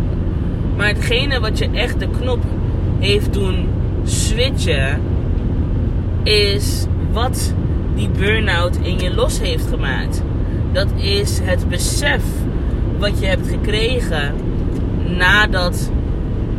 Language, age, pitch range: Dutch, 20-39, 85-100 Hz